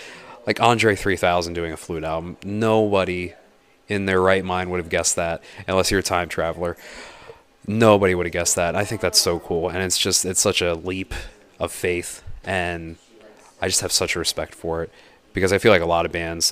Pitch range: 85-100 Hz